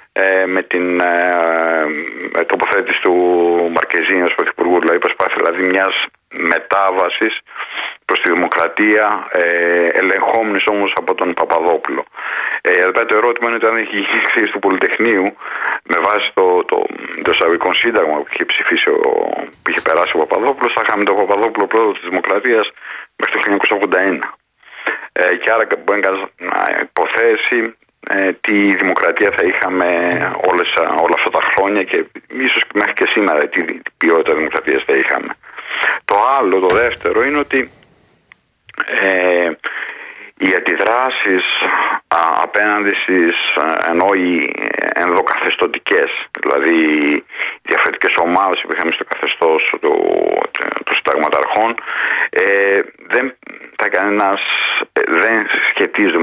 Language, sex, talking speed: Greek, male, 125 wpm